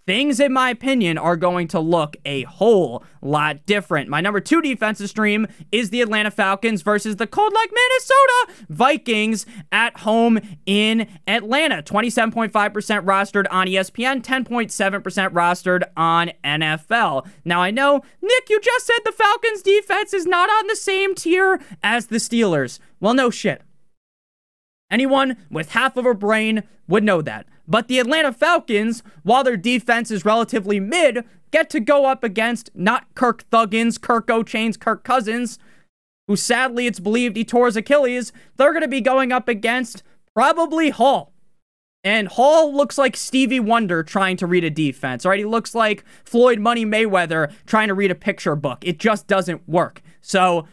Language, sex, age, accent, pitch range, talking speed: English, male, 20-39, American, 190-260 Hz, 160 wpm